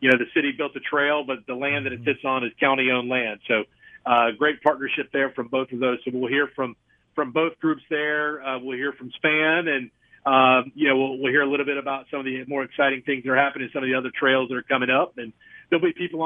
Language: English